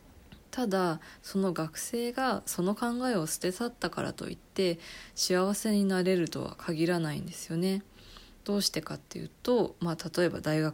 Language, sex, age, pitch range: Japanese, female, 20-39, 160-190 Hz